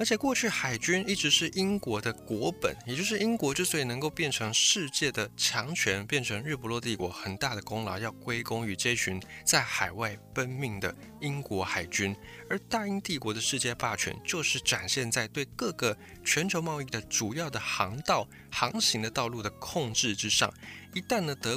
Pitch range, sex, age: 105-145 Hz, male, 20-39